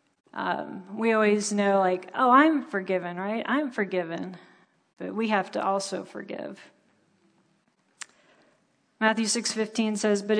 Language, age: English, 40-59